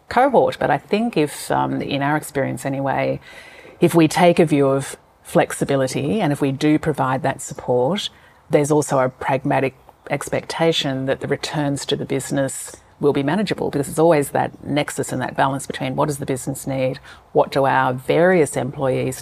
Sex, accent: female, Australian